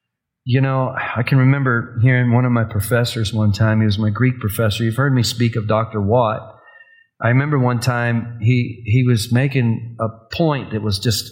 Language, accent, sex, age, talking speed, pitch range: English, American, male, 40-59, 195 wpm, 110-135 Hz